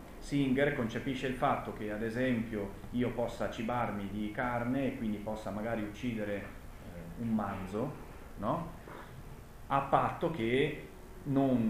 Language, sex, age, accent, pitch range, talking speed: Italian, male, 30-49, native, 100-125 Hz, 130 wpm